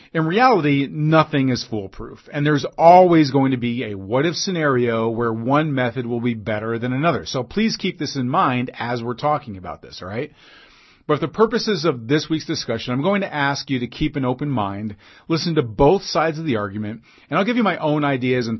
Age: 40-59